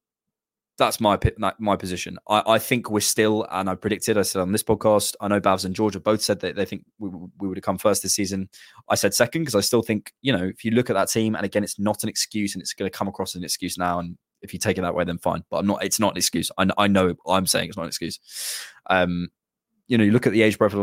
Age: 20-39